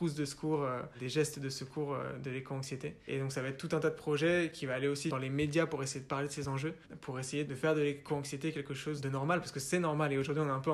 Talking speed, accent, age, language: 300 wpm, French, 20-39, French